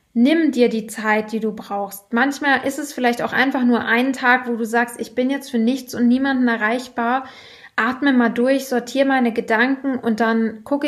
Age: 20-39